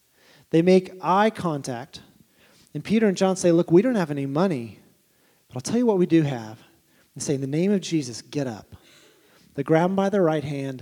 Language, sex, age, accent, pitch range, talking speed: English, male, 30-49, American, 145-195 Hz, 215 wpm